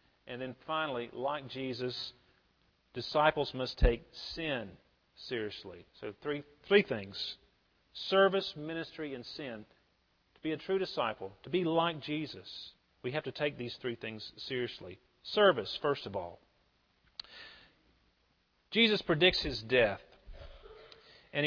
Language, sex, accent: English, male, American